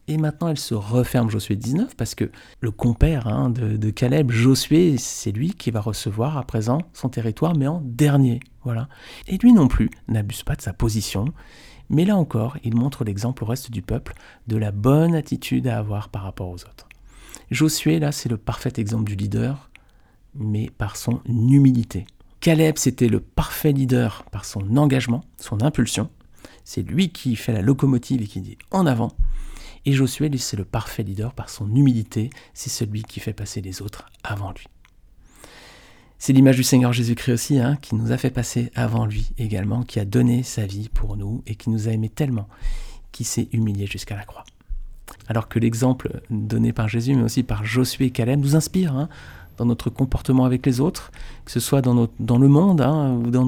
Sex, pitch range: male, 110-135 Hz